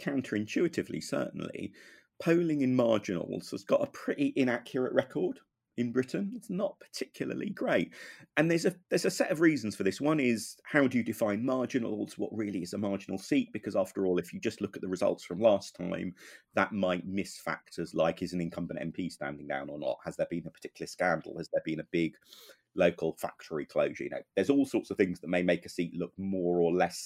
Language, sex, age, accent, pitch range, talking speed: English, male, 30-49, British, 90-130 Hz, 215 wpm